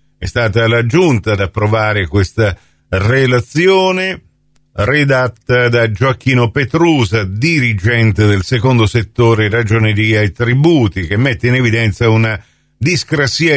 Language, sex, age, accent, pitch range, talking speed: Italian, male, 50-69, native, 105-140 Hz, 110 wpm